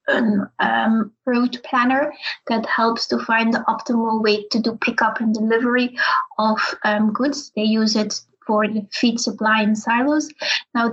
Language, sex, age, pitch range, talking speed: English, female, 20-39, 220-240 Hz, 155 wpm